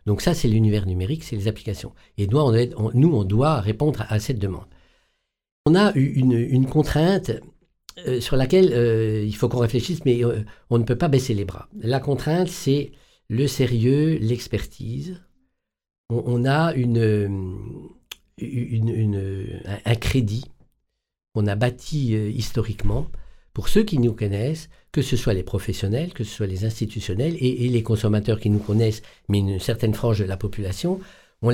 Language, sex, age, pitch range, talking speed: French, male, 50-69, 110-140 Hz, 175 wpm